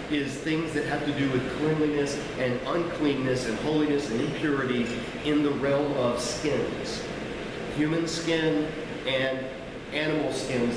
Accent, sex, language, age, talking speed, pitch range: American, male, English, 40-59, 135 wpm, 130-155 Hz